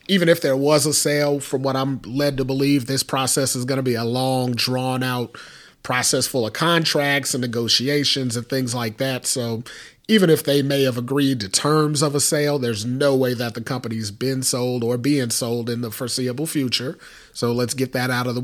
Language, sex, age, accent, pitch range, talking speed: English, male, 30-49, American, 125-145 Hz, 215 wpm